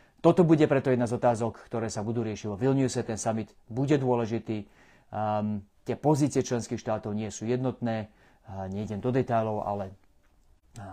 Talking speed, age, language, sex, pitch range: 165 wpm, 30-49, Slovak, male, 105-120 Hz